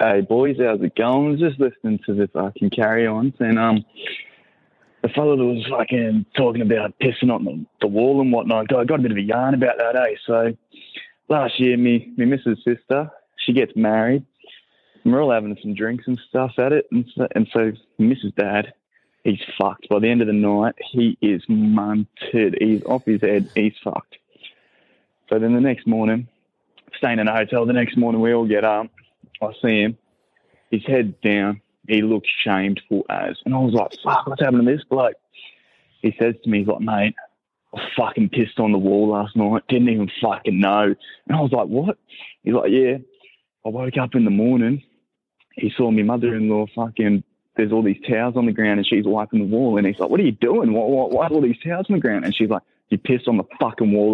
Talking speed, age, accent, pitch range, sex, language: 215 wpm, 20-39, Australian, 105-125 Hz, male, English